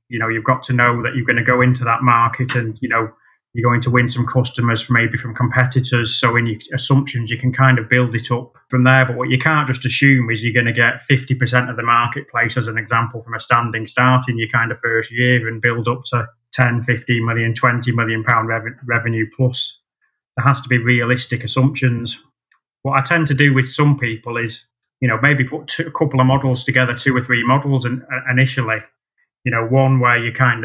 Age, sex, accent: 20-39, male, British